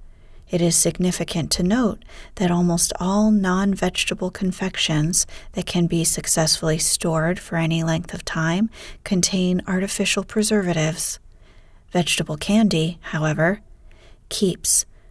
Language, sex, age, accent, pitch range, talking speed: English, female, 30-49, American, 165-210 Hz, 110 wpm